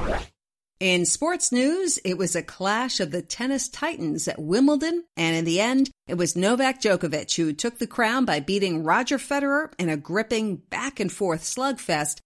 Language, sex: English, female